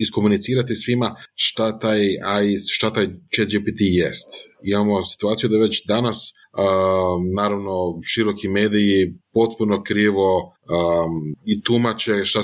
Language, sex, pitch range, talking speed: Croatian, male, 95-115 Hz, 105 wpm